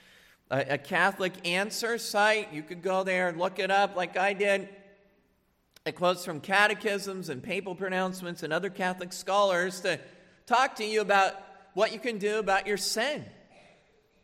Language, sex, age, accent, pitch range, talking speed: English, male, 50-69, American, 185-215 Hz, 160 wpm